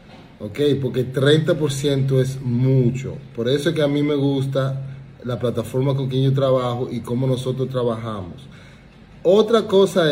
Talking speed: 150 wpm